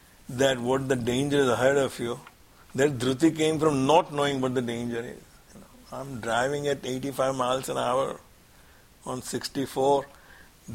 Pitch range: 125-155 Hz